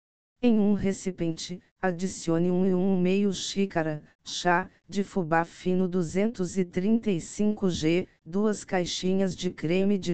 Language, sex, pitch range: Portuguese, female, 175-195 Hz